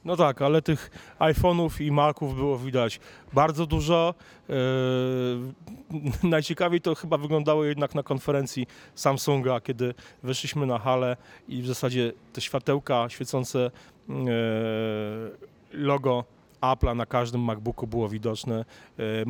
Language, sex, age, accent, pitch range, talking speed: Polish, male, 30-49, native, 115-155 Hz, 120 wpm